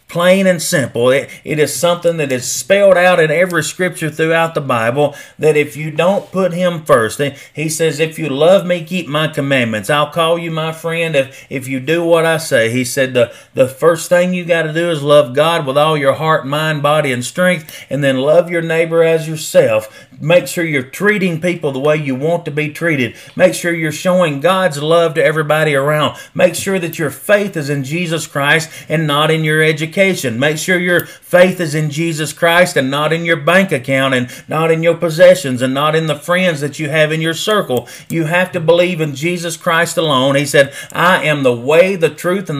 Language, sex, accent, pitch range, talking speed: English, male, American, 145-175 Hz, 220 wpm